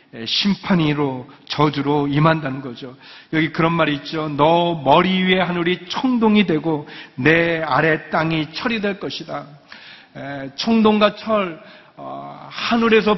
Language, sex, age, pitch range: Korean, male, 40-59, 150-190 Hz